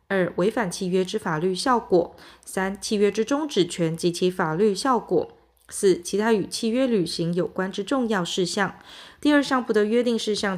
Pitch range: 180-240 Hz